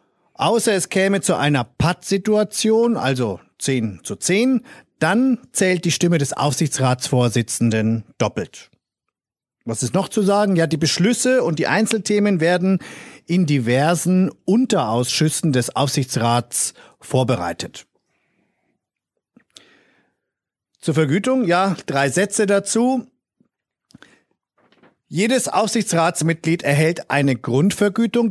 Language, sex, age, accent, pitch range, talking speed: German, male, 50-69, German, 135-200 Hz, 100 wpm